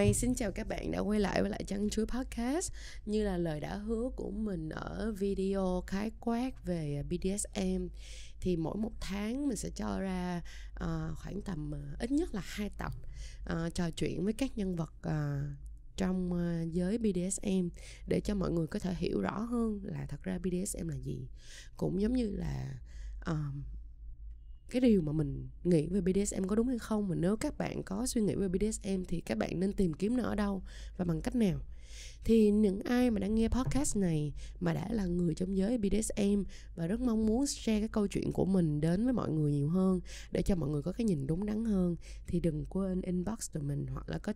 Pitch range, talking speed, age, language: 160-210 Hz, 215 wpm, 20-39, Vietnamese